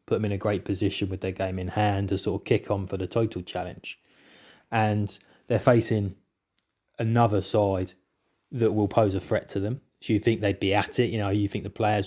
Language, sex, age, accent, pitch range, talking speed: English, male, 20-39, British, 100-115 Hz, 225 wpm